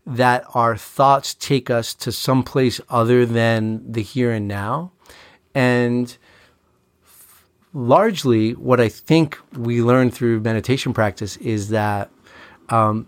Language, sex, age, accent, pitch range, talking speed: English, male, 40-59, American, 110-125 Hz, 130 wpm